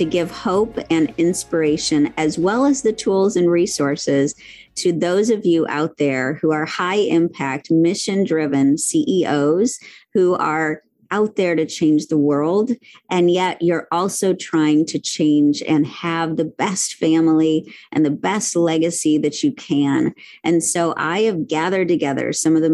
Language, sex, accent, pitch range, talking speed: English, female, American, 150-190 Hz, 160 wpm